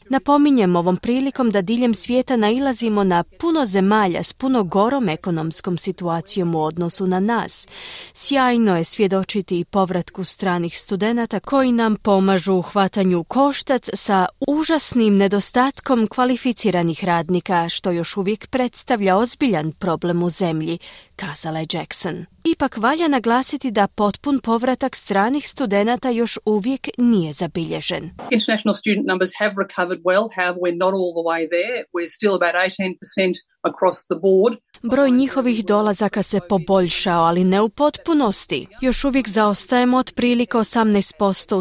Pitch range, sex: 180-245 Hz, female